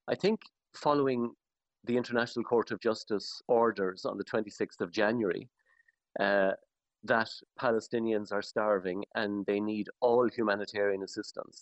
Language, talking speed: English, 130 wpm